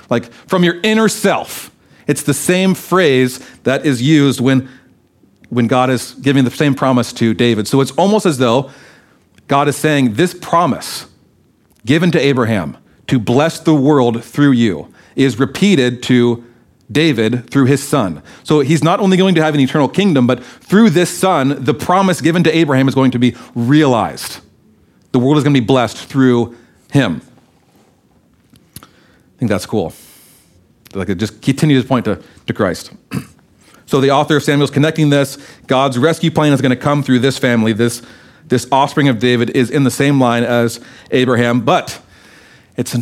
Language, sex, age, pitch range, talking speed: English, male, 40-59, 120-150 Hz, 170 wpm